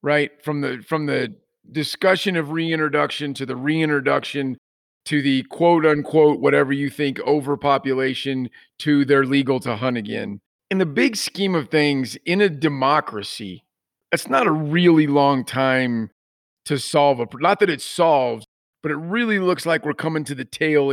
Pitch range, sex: 125-160 Hz, male